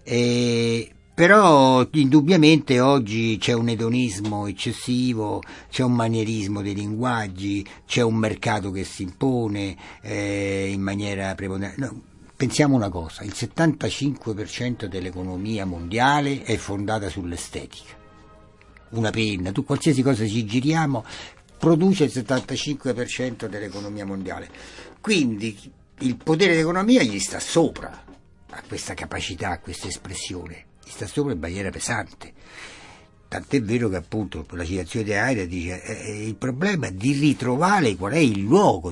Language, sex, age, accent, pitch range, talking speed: Italian, male, 60-79, native, 100-125 Hz, 130 wpm